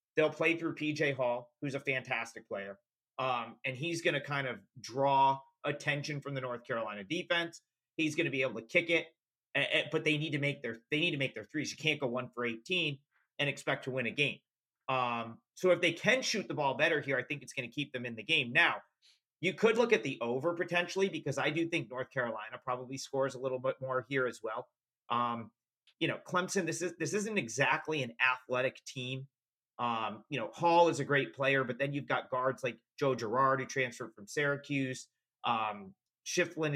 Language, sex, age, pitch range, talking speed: English, male, 40-59, 125-160 Hz, 215 wpm